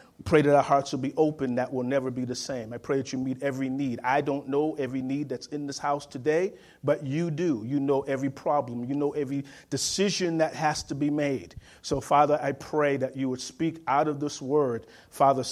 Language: English